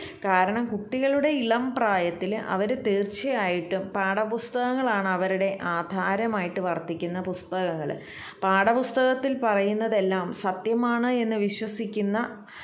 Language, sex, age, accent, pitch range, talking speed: Malayalam, female, 30-49, native, 185-235 Hz, 75 wpm